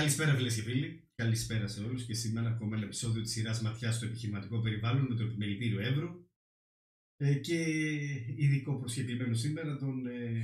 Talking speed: 165 wpm